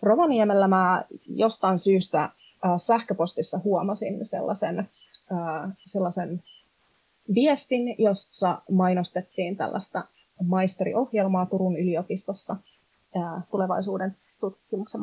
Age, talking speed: 30-49, 70 wpm